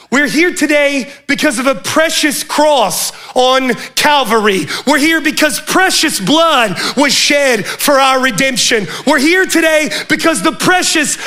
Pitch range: 230-300 Hz